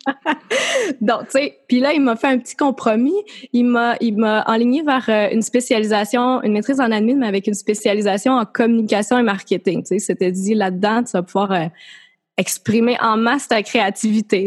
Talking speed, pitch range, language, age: 185 wpm, 200-240 Hz, French, 20-39